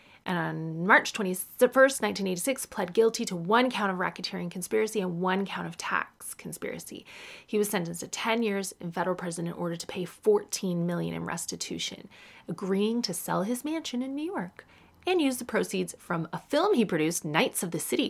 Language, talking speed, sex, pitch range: English, 190 wpm, female, 170-230 Hz